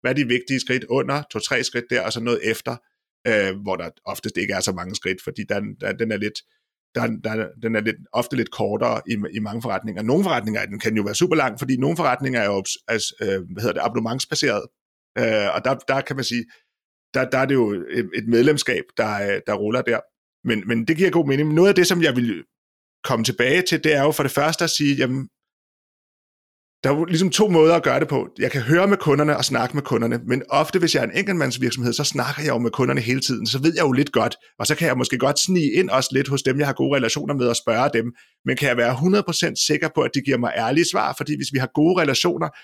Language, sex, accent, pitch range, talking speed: Danish, male, native, 115-150 Hz, 230 wpm